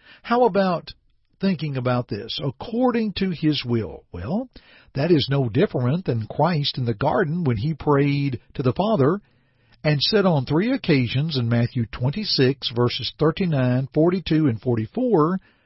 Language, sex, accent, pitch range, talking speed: English, male, American, 125-180 Hz, 145 wpm